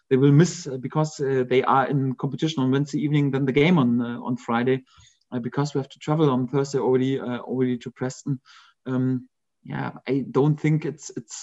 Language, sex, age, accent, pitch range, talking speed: English, male, 30-49, German, 135-155 Hz, 205 wpm